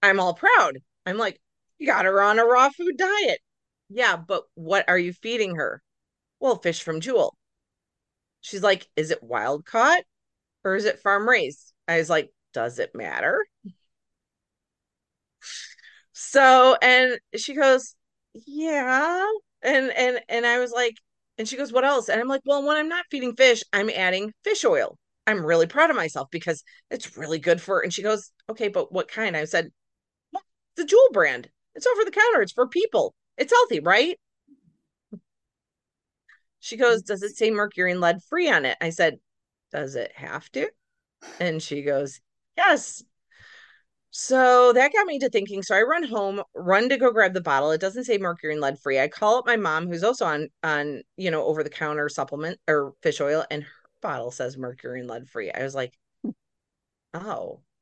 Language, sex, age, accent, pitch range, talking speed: English, female, 30-49, American, 165-275 Hz, 185 wpm